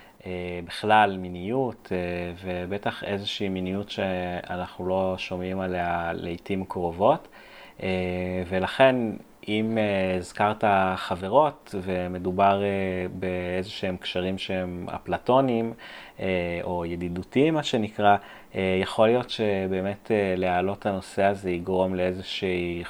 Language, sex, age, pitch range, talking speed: Hebrew, male, 30-49, 90-110 Hz, 85 wpm